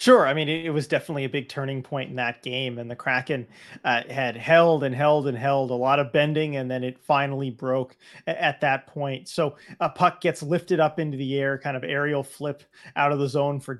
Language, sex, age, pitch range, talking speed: English, male, 30-49, 130-150 Hz, 240 wpm